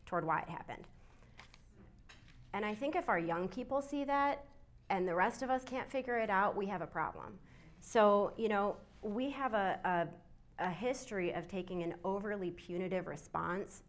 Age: 30-49